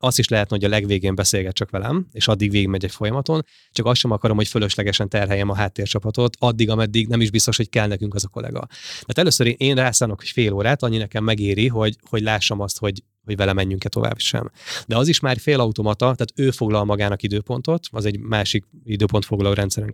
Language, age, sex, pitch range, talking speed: Hungarian, 20-39, male, 105-125 Hz, 210 wpm